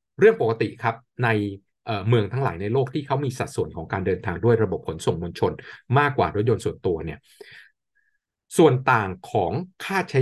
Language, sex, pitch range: Thai, male, 100-140 Hz